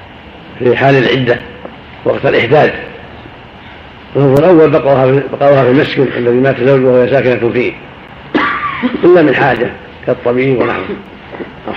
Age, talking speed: 50-69, 110 wpm